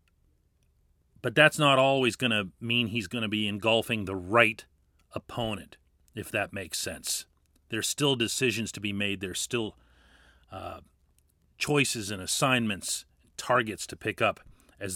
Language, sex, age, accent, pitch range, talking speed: English, male, 40-59, American, 75-115 Hz, 145 wpm